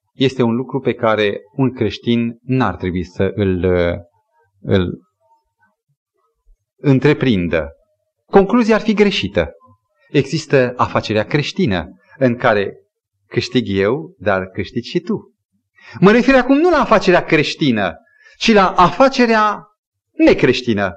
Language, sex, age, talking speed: Romanian, male, 30-49, 110 wpm